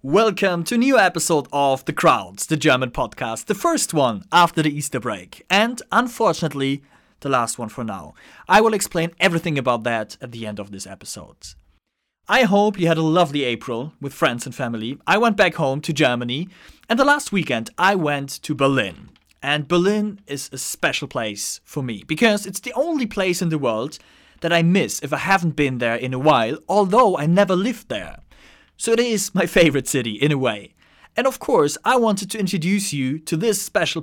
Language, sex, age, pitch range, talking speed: English, male, 30-49, 135-200 Hz, 200 wpm